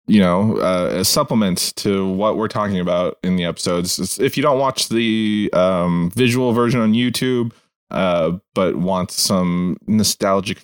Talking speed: 160 wpm